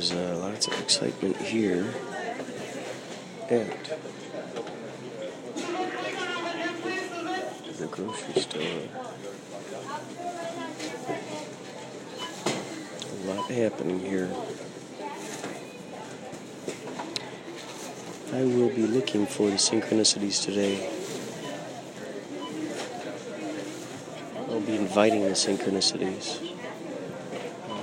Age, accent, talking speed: 50-69, American, 60 wpm